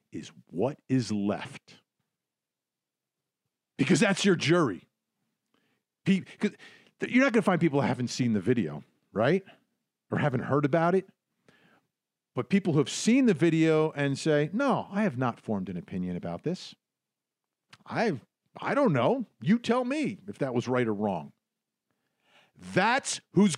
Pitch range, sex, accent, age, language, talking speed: 140-210 Hz, male, American, 50-69, English, 155 wpm